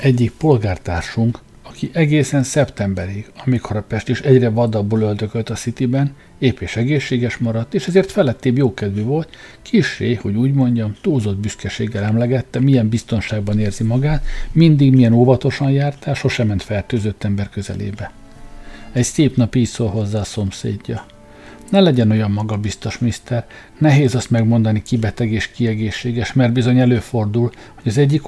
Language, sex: Hungarian, male